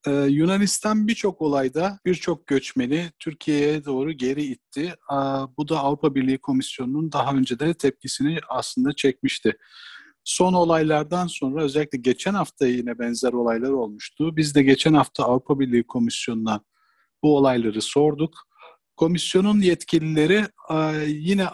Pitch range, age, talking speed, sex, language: 125-160 Hz, 50-69, 120 wpm, male, Turkish